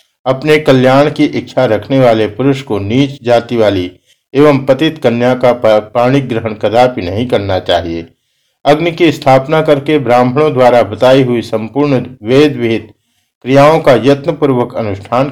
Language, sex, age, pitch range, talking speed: Hindi, male, 50-69, 110-145 Hz, 135 wpm